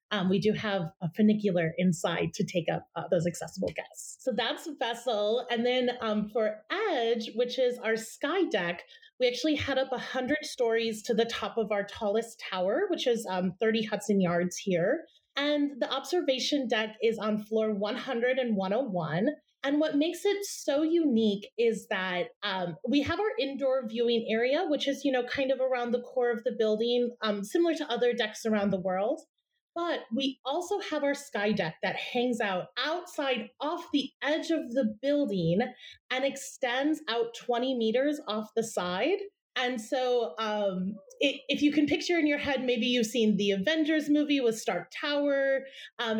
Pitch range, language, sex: 215-285 Hz, English, female